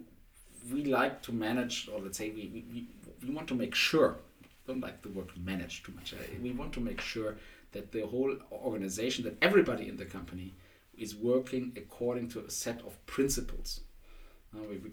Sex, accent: male, German